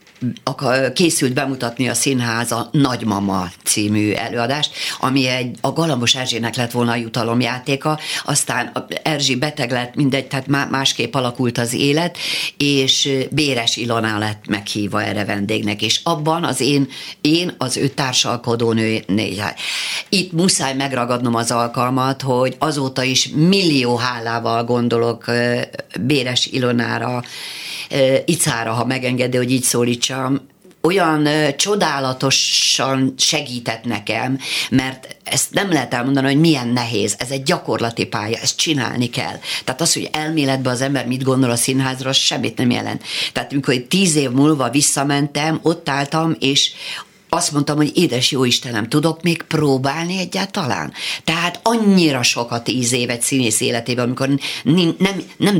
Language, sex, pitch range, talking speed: Hungarian, female, 120-145 Hz, 135 wpm